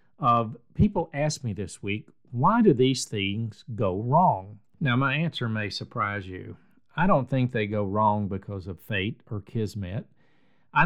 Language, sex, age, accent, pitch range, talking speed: English, male, 50-69, American, 105-150 Hz, 165 wpm